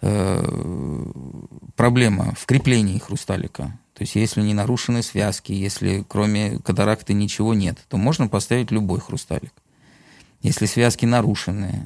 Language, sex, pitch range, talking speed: Russian, male, 100-120 Hz, 115 wpm